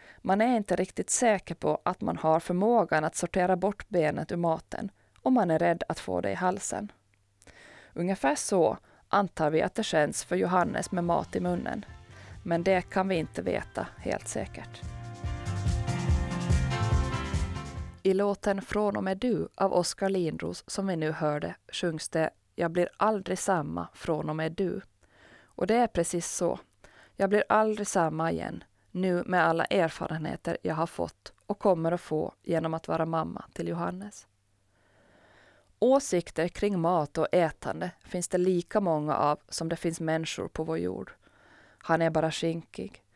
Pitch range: 150-190 Hz